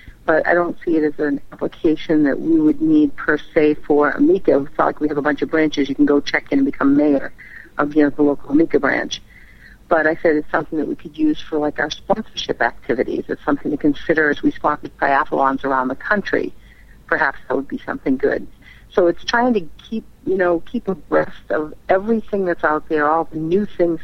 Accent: American